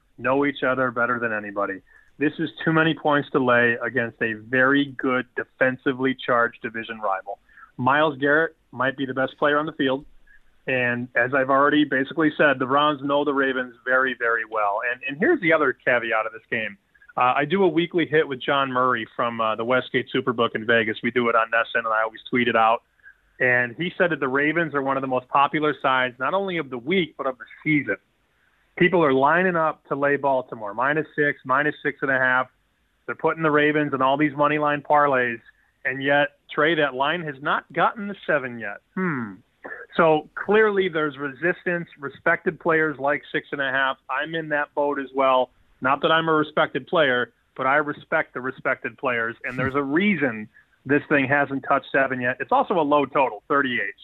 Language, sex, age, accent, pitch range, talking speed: English, male, 30-49, American, 130-155 Hz, 205 wpm